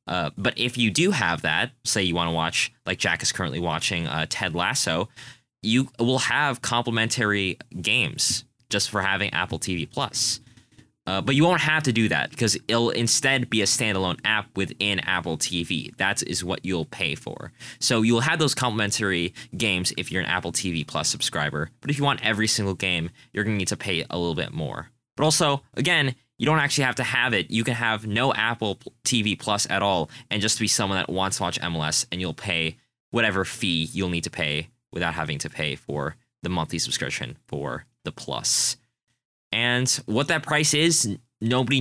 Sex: male